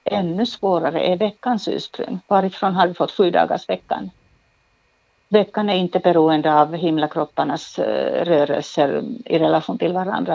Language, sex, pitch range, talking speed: Swedish, female, 160-190 Hz, 130 wpm